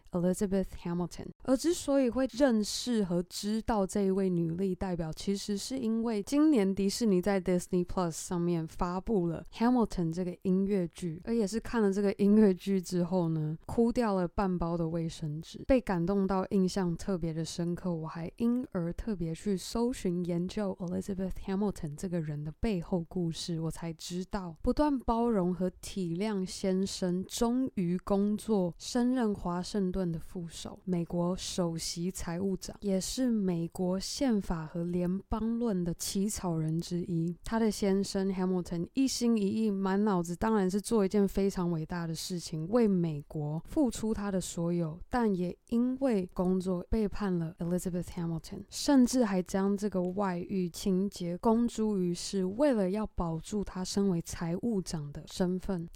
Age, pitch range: 20-39, 175-210 Hz